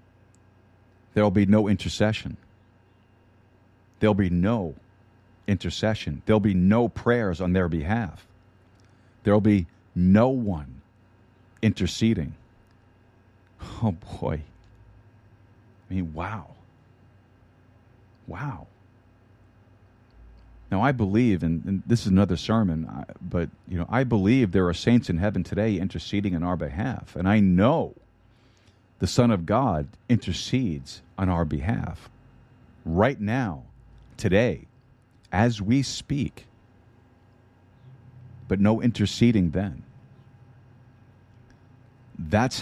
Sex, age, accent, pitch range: male, 50-69, American, 95-115 Hz